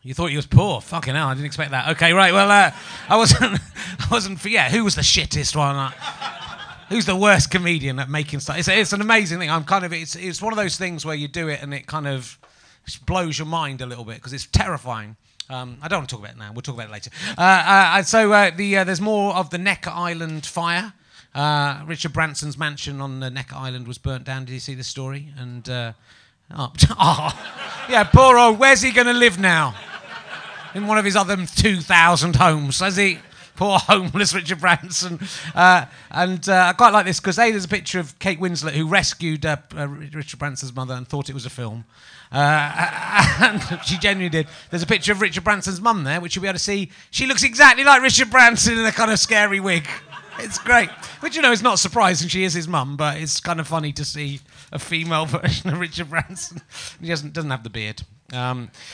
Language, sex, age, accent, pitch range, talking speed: English, male, 30-49, British, 140-195 Hz, 225 wpm